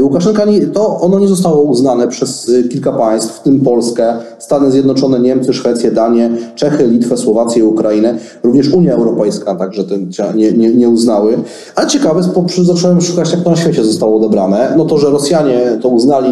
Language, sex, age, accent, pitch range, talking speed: Polish, male, 30-49, native, 120-160 Hz, 175 wpm